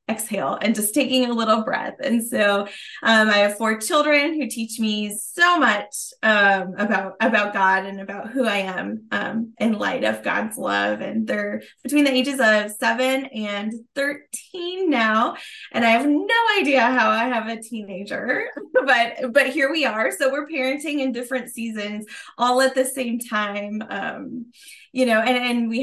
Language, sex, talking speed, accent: English, female, 175 wpm, American